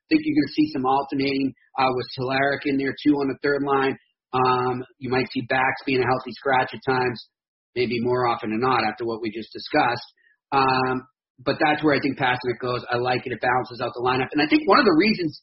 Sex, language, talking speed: male, English, 245 wpm